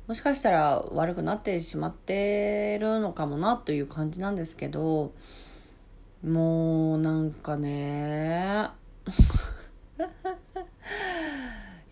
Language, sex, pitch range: Japanese, female, 145-205 Hz